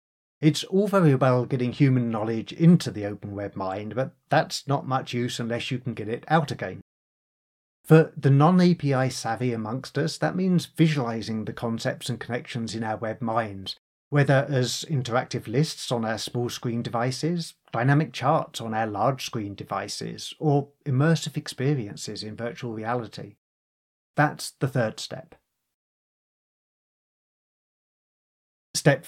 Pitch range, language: 115-150 Hz, English